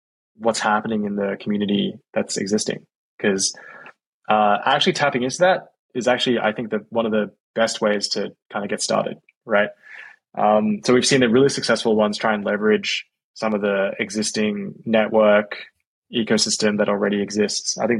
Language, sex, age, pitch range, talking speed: English, male, 20-39, 105-120 Hz, 170 wpm